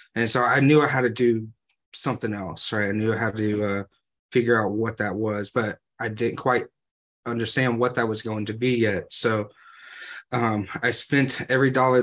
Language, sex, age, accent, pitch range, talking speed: English, male, 20-39, American, 105-120 Hz, 200 wpm